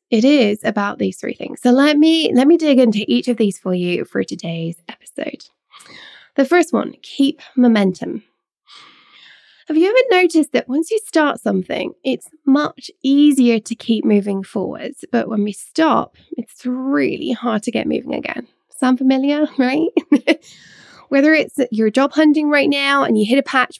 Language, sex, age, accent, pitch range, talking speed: English, female, 20-39, British, 210-280 Hz, 170 wpm